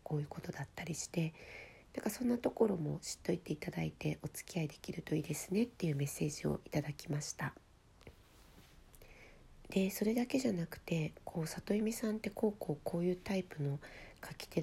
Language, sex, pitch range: Japanese, female, 150-205 Hz